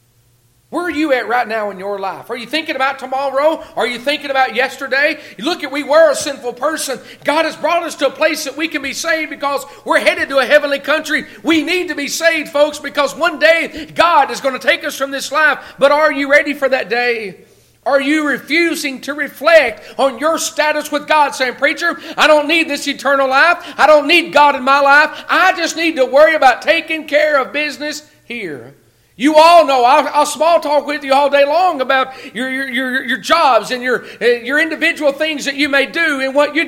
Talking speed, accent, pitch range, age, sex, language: 225 wpm, American, 260-310 Hz, 40-59, male, English